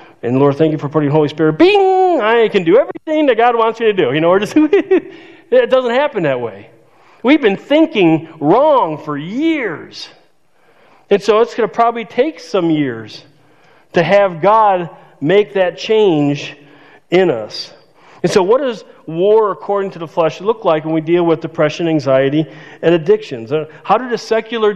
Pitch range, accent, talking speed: 150-210 Hz, American, 180 wpm